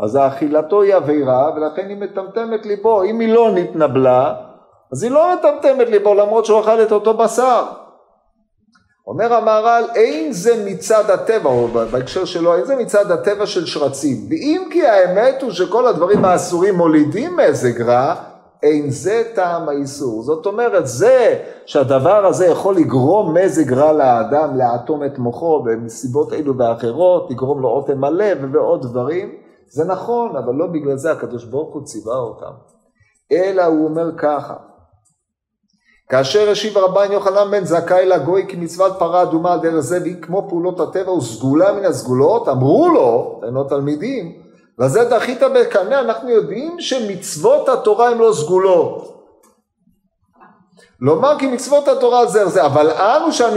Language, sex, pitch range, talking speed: Hebrew, male, 160-240 Hz, 150 wpm